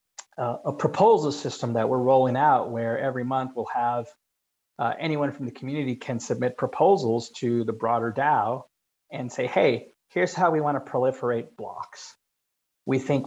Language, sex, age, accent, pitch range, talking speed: English, male, 30-49, American, 115-135 Hz, 165 wpm